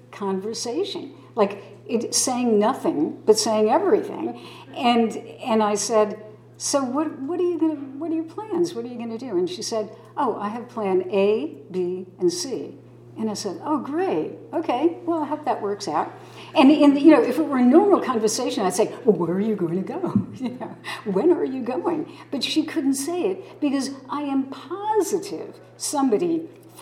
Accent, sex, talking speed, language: American, female, 190 wpm, English